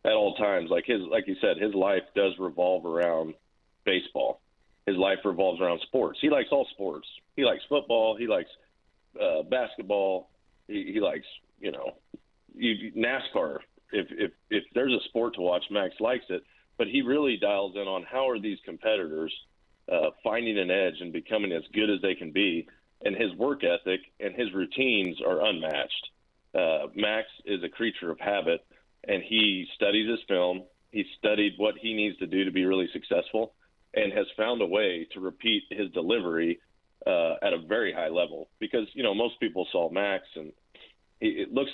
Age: 40-59